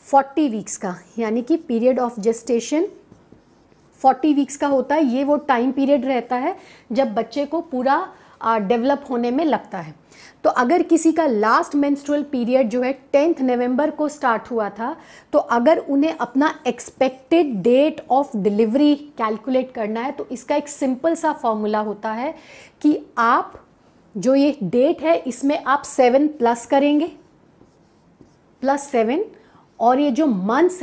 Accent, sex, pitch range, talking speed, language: native, female, 235-295 Hz, 155 wpm, Hindi